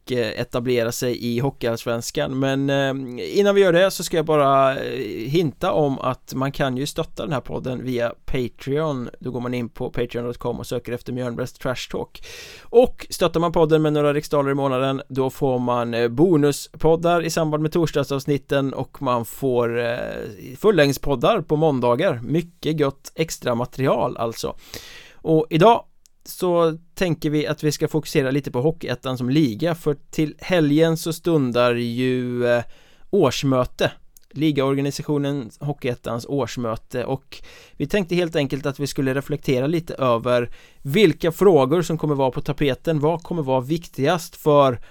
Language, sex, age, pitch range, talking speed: Swedish, male, 20-39, 125-155 Hz, 150 wpm